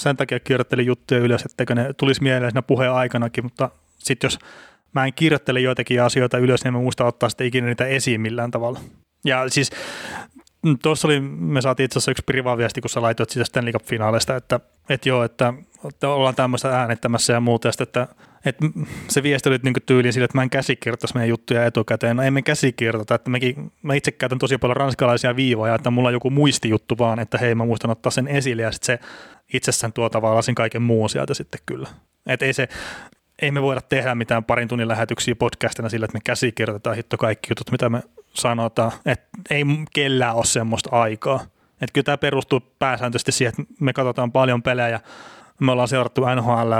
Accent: native